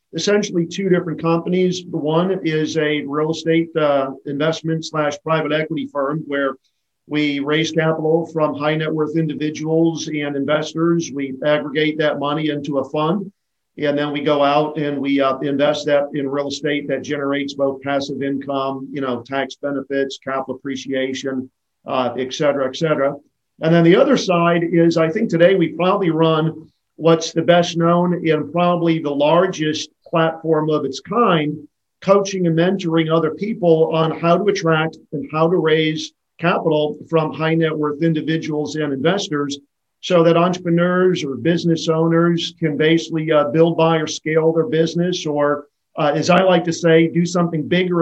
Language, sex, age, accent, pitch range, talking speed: English, male, 50-69, American, 145-170 Hz, 165 wpm